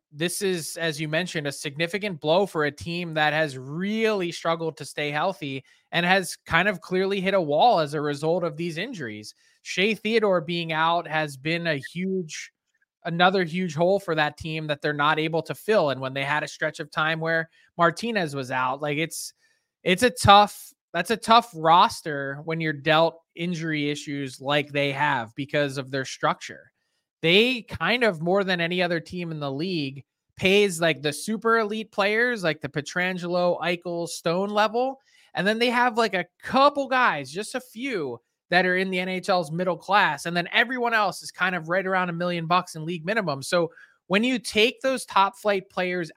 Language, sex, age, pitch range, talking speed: English, male, 20-39, 155-200 Hz, 195 wpm